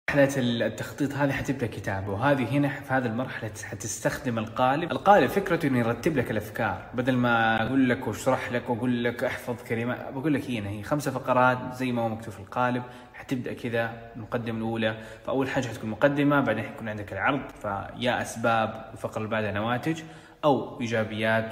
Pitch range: 115-135 Hz